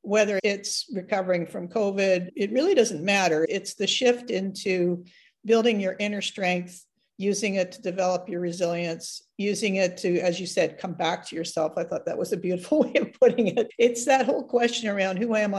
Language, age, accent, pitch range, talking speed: English, 50-69, American, 175-210 Hz, 195 wpm